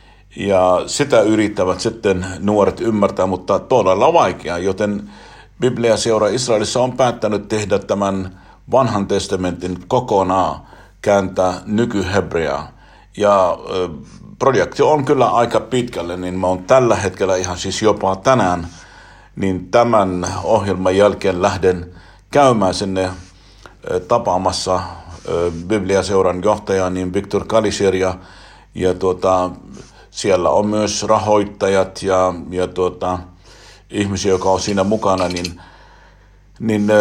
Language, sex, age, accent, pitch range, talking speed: Finnish, male, 50-69, native, 90-105 Hz, 110 wpm